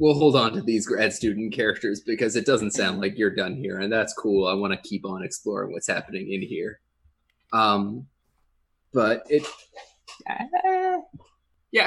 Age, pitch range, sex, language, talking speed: 20-39, 95-125 Hz, male, English, 165 wpm